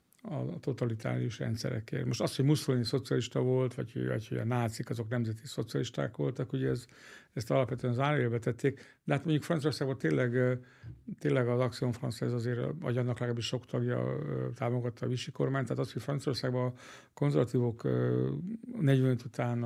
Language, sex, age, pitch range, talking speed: Hungarian, male, 60-79, 115-135 Hz, 160 wpm